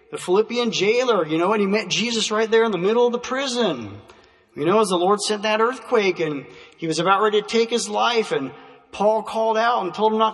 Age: 40-59